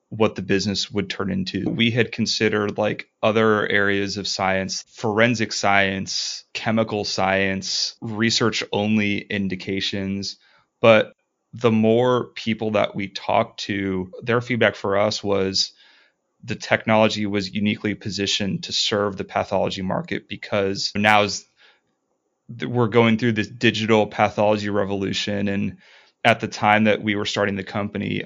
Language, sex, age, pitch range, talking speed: English, male, 30-49, 100-110 Hz, 135 wpm